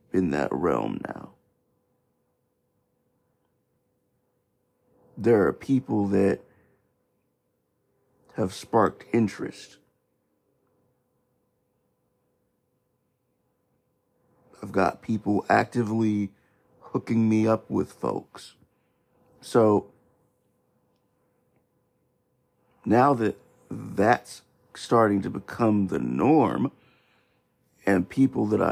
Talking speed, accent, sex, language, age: 65 wpm, American, male, English, 50-69